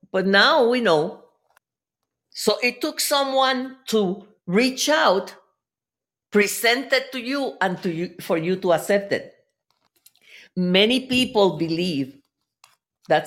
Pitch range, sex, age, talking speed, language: 170-255 Hz, female, 50-69, 120 wpm, English